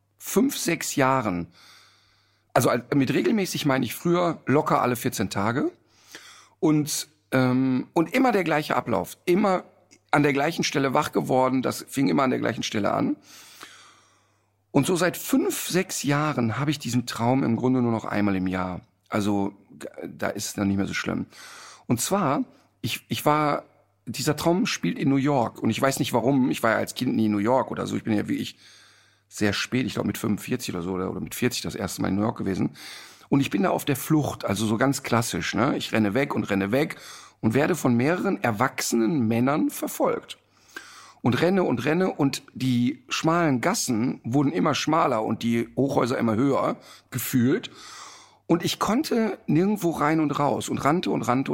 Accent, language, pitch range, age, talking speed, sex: German, German, 110-155 Hz, 50-69, 190 wpm, male